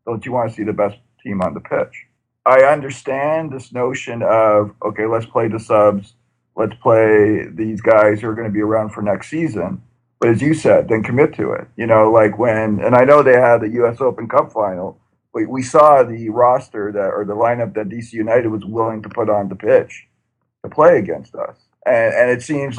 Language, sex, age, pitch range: English, male, 50-69, 110-135 Hz